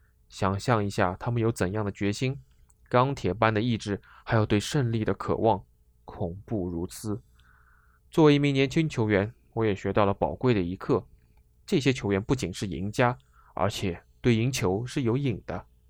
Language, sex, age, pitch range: Chinese, male, 20-39, 95-130 Hz